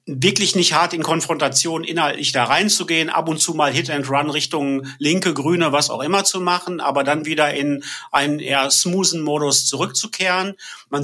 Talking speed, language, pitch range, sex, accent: 180 wpm, German, 135-155 Hz, male, German